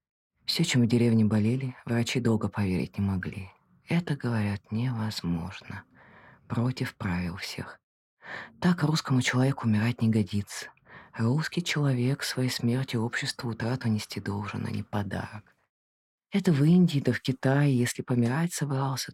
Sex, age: female, 20-39